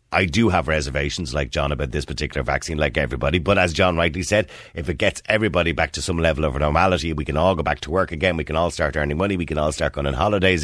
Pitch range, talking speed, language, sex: 75-95 Hz, 270 wpm, English, male